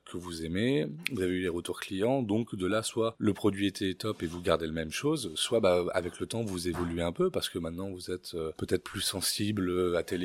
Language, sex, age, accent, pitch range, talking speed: French, male, 30-49, French, 90-110 Hz, 245 wpm